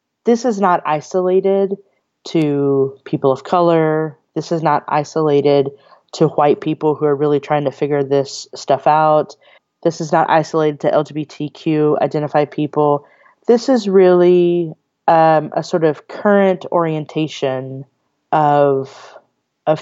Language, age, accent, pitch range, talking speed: English, 30-49, American, 150-175 Hz, 130 wpm